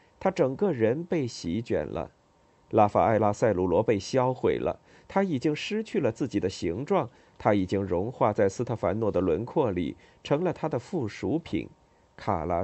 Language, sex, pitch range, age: Chinese, male, 105-160 Hz, 50-69